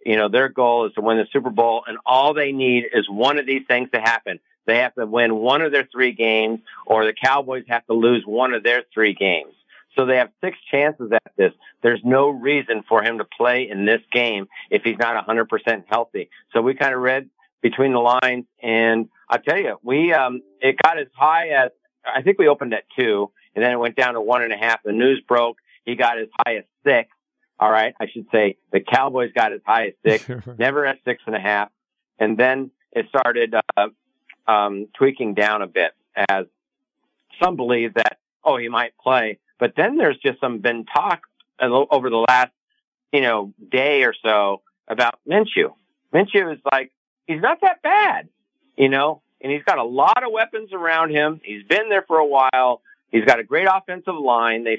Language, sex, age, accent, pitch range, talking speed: English, male, 50-69, American, 115-150 Hz, 210 wpm